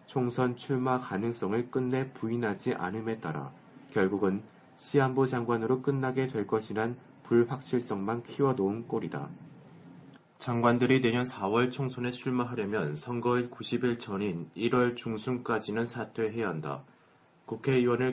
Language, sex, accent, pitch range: Korean, male, native, 110-125 Hz